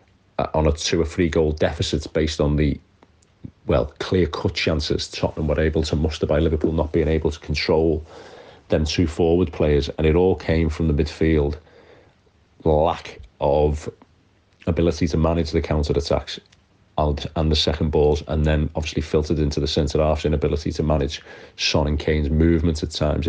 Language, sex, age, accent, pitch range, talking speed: English, male, 40-59, British, 75-85 Hz, 160 wpm